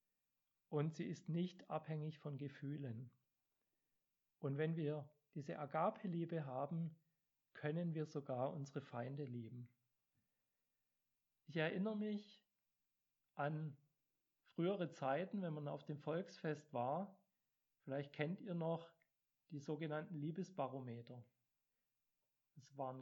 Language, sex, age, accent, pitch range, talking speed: German, male, 40-59, German, 140-175 Hz, 105 wpm